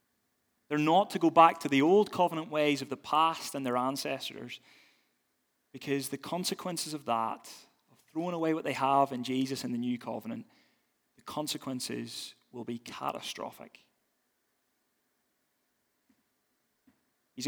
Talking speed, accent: 135 wpm, British